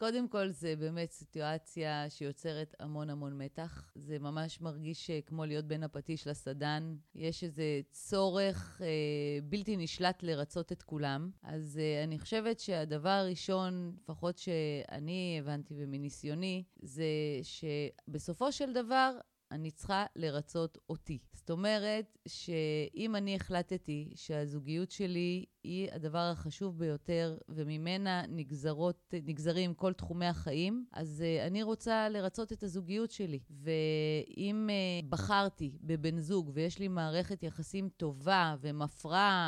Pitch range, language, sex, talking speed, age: 150-185 Hz, Hebrew, female, 120 wpm, 30-49